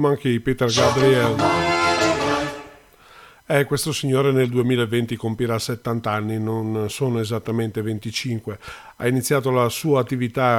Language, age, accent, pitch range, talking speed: Italian, 50-69, native, 115-135 Hz, 115 wpm